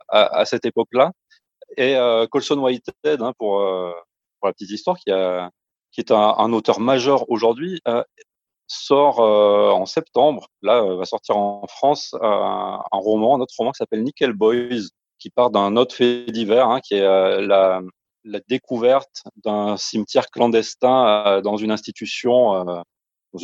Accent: French